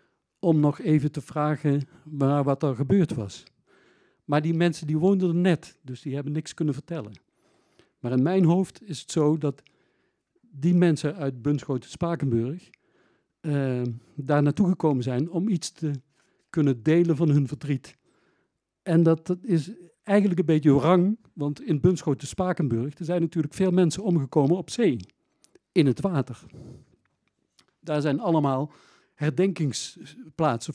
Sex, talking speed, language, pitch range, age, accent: male, 140 wpm, Dutch, 135-175 Hz, 50-69, Dutch